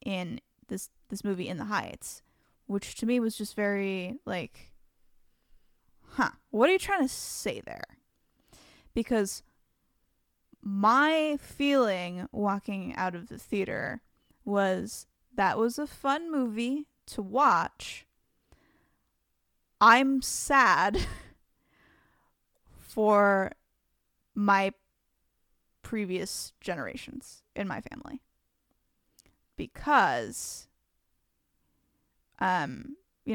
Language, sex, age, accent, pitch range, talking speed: English, female, 10-29, American, 185-245 Hz, 90 wpm